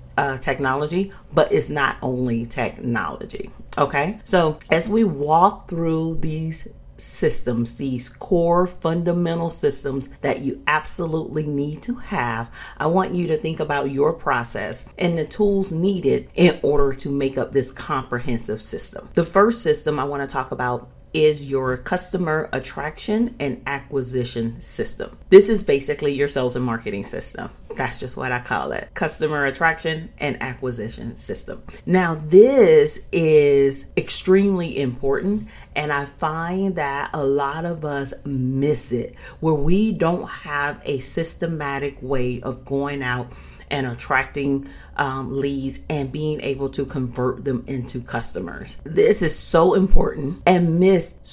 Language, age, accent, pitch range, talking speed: English, 40-59, American, 130-160 Hz, 145 wpm